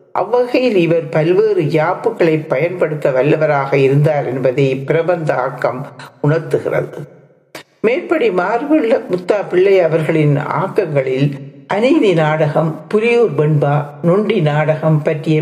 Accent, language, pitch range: native, Tamil, 150-195 Hz